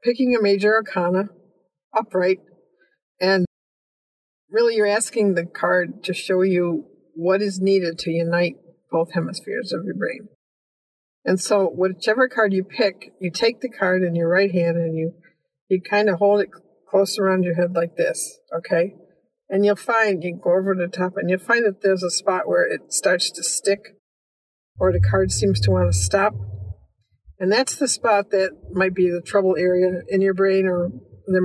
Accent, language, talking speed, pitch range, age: American, English, 180 wpm, 170-200 Hz, 50-69